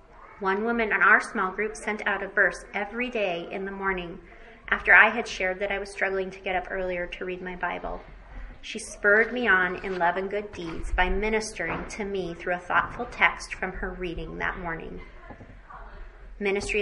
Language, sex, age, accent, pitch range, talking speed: English, female, 30-49, American, 185-215 Hz, 195 wpm